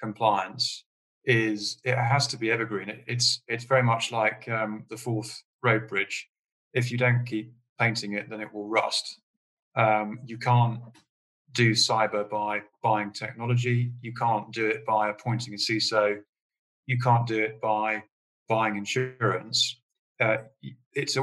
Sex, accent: male, British